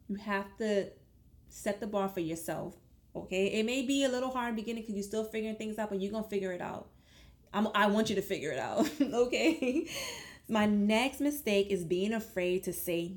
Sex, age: female, 20-39